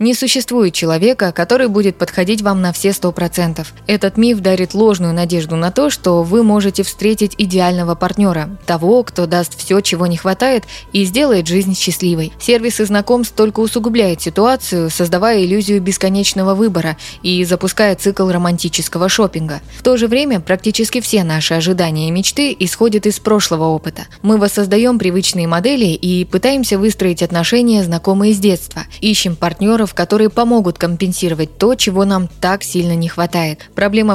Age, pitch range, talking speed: 20-39, 175-215 Hz, 155 wpm